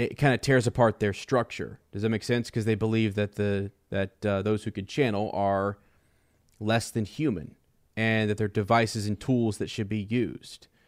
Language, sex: English, male